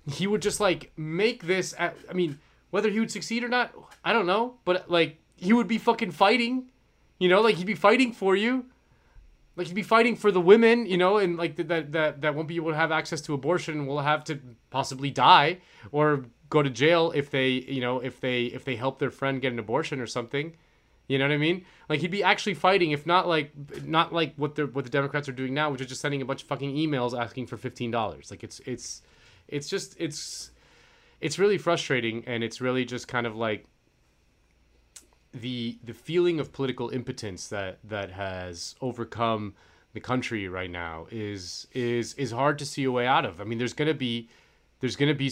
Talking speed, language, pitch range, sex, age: 215 wpm, English, 115-165 Hz, male, 30-49